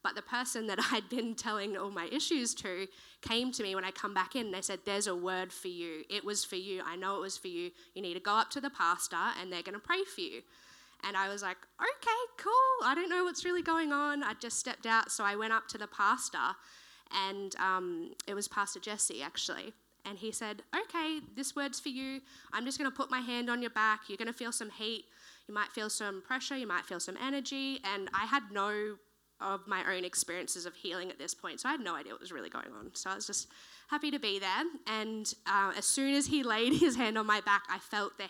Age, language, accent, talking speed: 10-29, English, Australian, 255 wpm